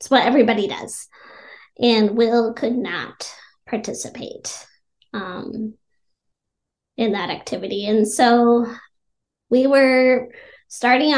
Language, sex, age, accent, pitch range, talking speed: English, female, 20-39, American, 225-265 Hz, 95 wpm